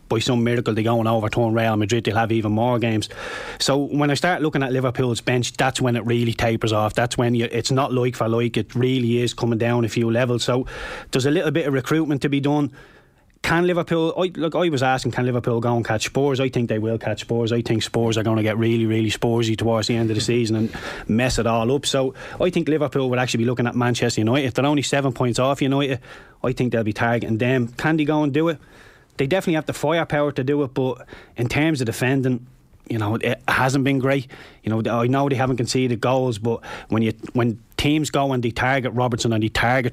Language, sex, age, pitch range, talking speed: English, male, 20-39, 115-135 Hz, 245 wpm